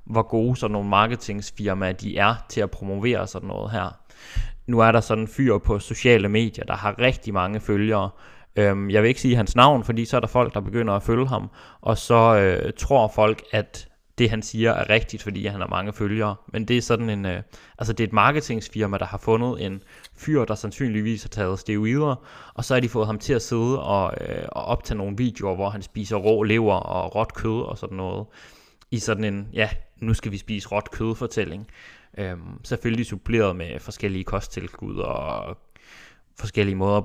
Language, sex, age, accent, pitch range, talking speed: Danish, male, 20-39, native, 100-115 Hz, 200 wpm